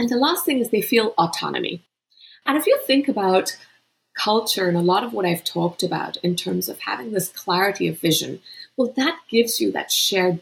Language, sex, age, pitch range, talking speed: English, female, 30-49, 180-245 Hz, 205 wpm